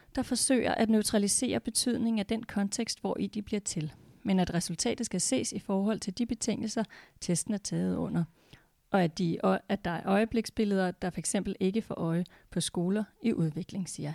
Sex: female